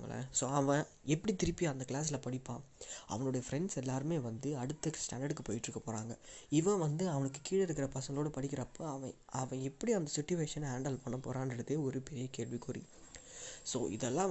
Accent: native